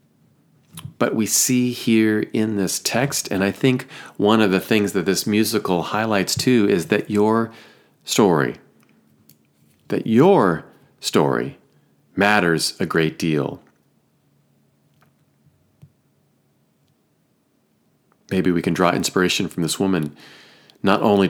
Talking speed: 115 wpm